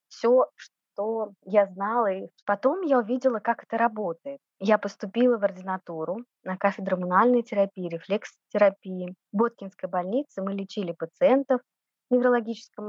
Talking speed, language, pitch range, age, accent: 130 wpm, Russian, 190-235 Hz, 20-39, native